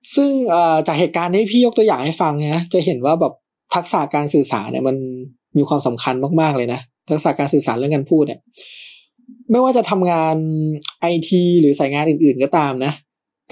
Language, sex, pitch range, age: Thai, male, 145-200 Hz, 20-39